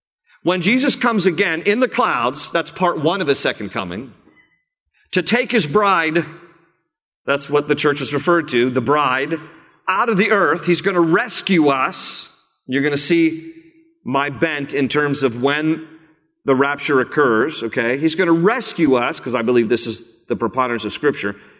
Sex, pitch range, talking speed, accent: male, 125-175 Hz, 180 wpm, American